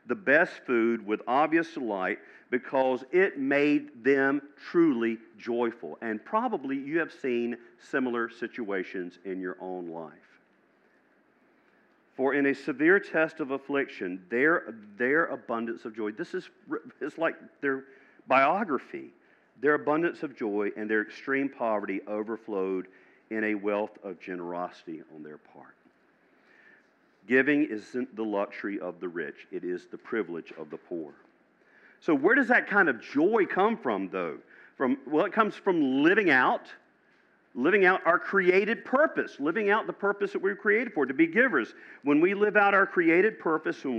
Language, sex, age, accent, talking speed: English, male, 50-69, American, 155 wpm